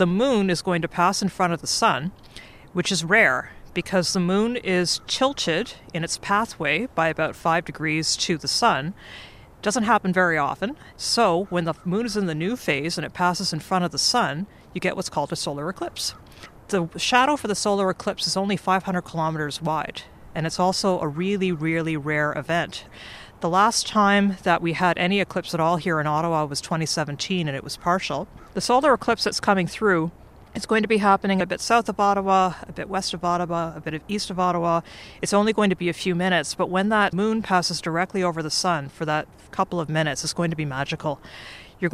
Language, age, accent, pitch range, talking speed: English, 40-59, American, 165-195 Hz, 215 wpm